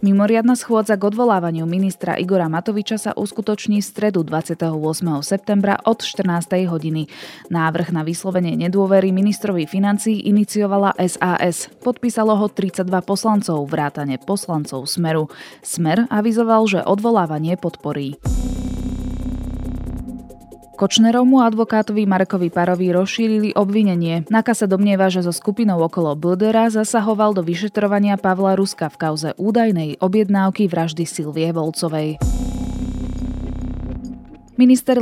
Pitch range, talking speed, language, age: 160-210 Hz, 110 wpm, Slovak, 20-39